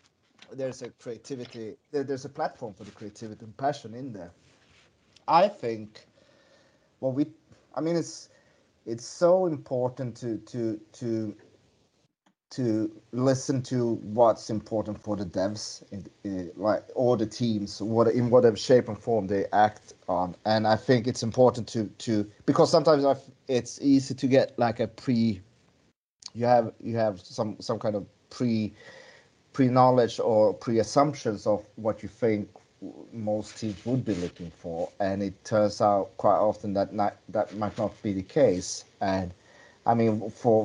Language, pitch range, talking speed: English, 105-125 Hz, 160 wpm